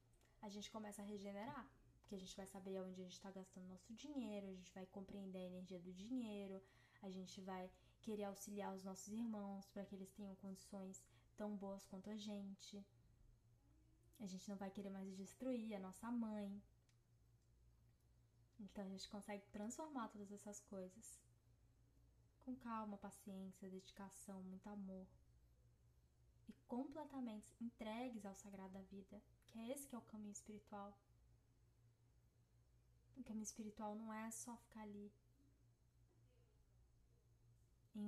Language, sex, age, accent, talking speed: Portuguese, female, 10-29, Brazilian, 145 wpm